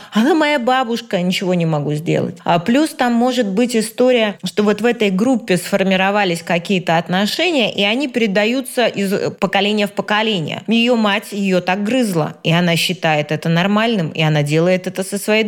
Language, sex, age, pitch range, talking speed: Russian, female, 20-39, 180-215 Hz, 170 wpm